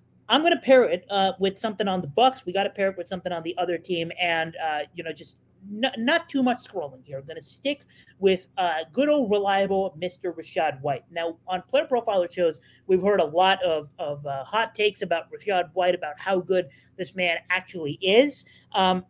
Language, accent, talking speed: English, American, 220 wpm